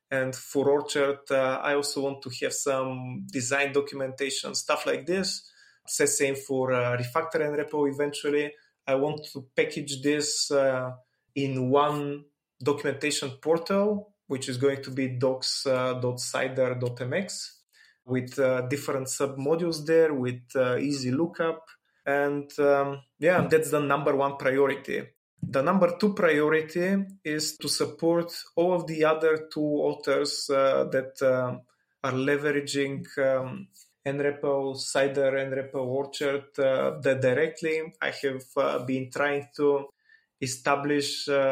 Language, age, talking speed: English, 30-49, 130 wpm